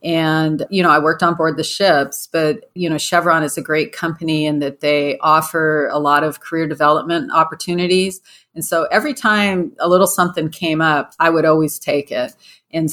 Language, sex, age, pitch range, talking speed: English, female, 40-59, 150-180 Hz, 195 wpm